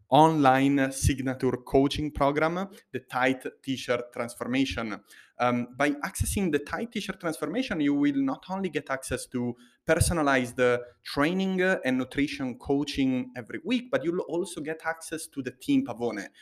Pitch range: 125-180 Hz